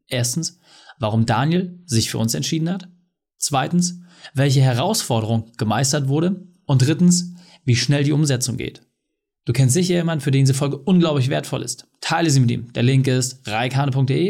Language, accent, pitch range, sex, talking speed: German, German, 125-175 Hz, male, 165 wpm